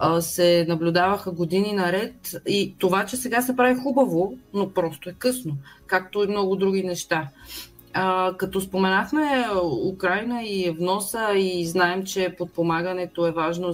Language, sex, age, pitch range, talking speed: Bulgarian, female, 30-49, 165-215 Hz, 140 wpm